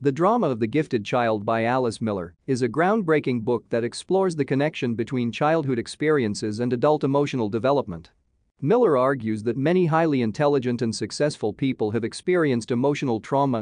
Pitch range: 115-150 Hz